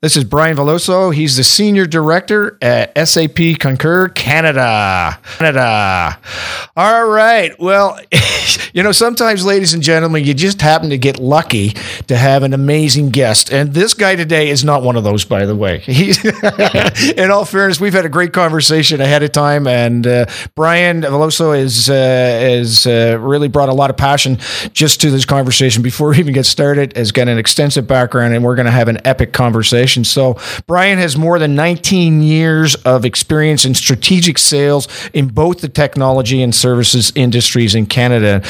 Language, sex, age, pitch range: English, male, 50-69, 130-170 Hz